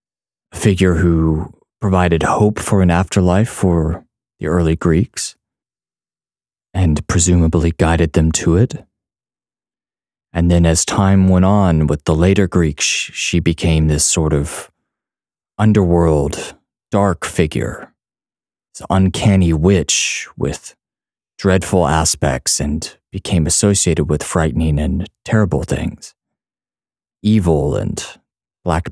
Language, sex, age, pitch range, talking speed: English, male, 30-49, 80-95 Hz, 110 wpm